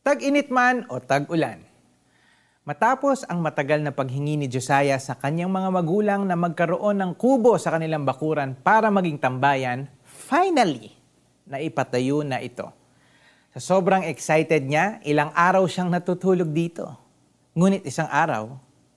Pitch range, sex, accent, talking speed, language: 140-210 Hz, male, native, 135 wpm, Filipino